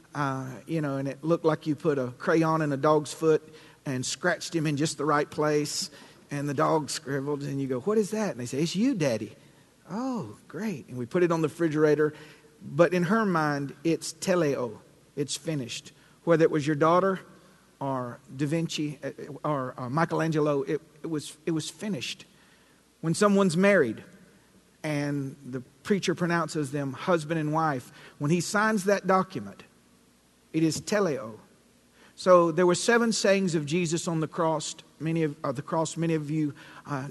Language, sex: English, male